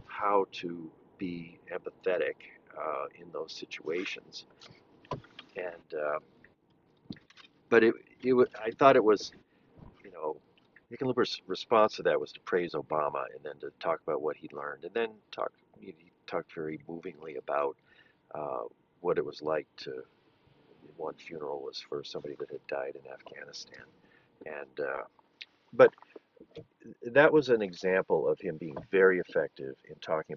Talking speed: 145 wpm